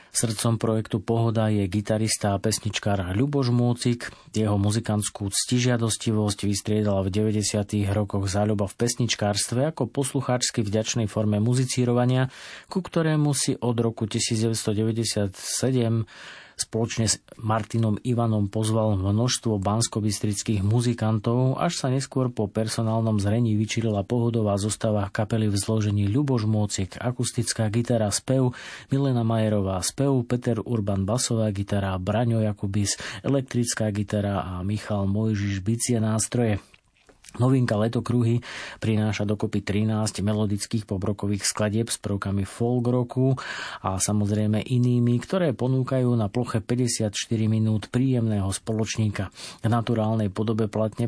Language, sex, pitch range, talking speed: Slovak, male, 105-120 Hz, 115 wpm